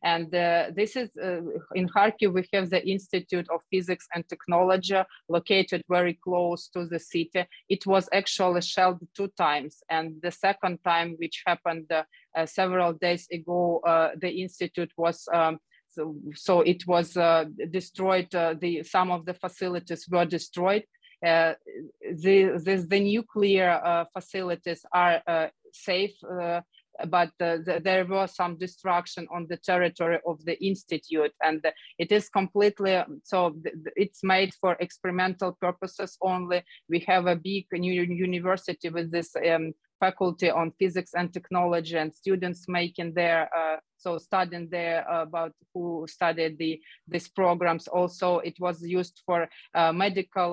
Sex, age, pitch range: female, 30-49, 170-185 Hz